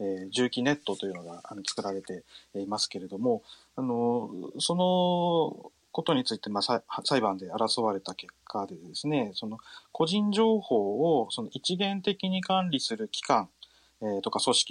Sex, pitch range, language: male, 110-165 Hz, Japanese